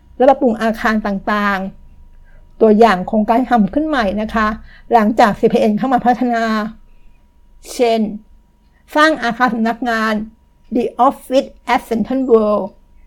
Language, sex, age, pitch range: Thai, female, 60-79, 215-255 Hz